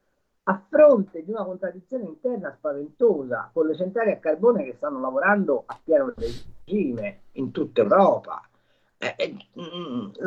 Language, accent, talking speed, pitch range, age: Italian, native, 140 wpm, 155-260 Hz, 50-69